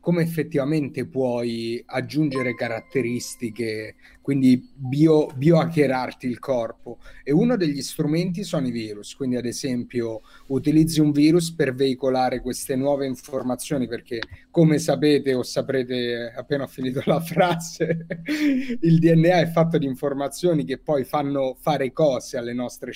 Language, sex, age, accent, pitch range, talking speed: Italian, male, 30-49, native, 125-160 Hz, 135 wpm